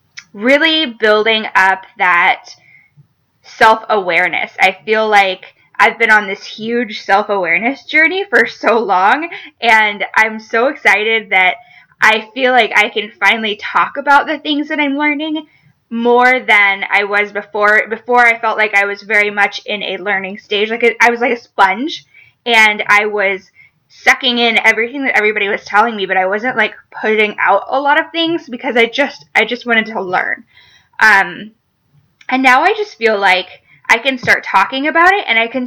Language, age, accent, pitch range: English, 10-29, American, 205-255 Hz